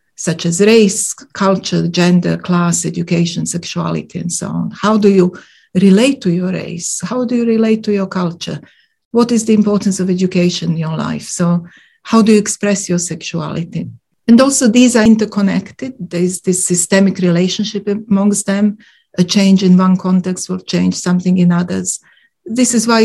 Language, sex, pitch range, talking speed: English, female, 175-210 Hz, 170 wpm